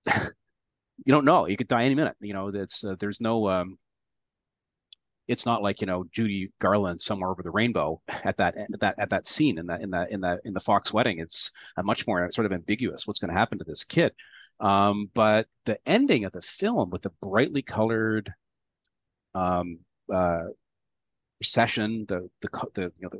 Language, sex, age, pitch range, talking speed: English, male, 30-49, 95-110 Hz, 190 wpm